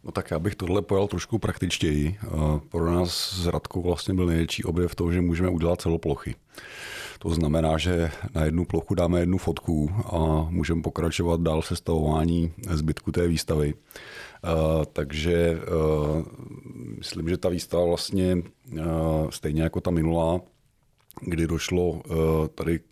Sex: male